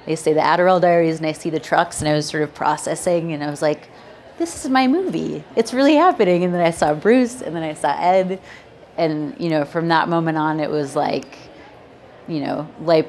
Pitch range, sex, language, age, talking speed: 150-175 Hz, female, English, 30-49, 230 wpm